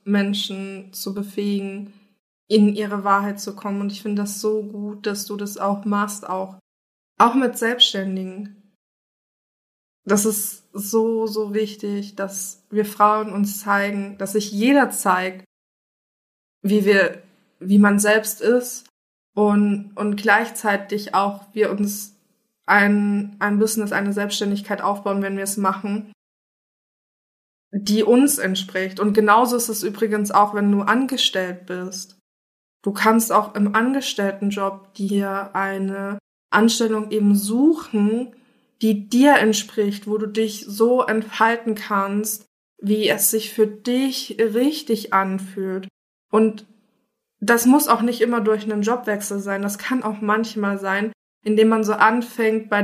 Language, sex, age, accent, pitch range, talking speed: German, female, 20-39, German, 200-220 Hz, 135 wpm